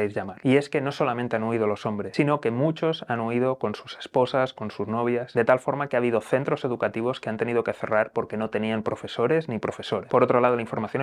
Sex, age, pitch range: male, 30-49, 110-140 Hz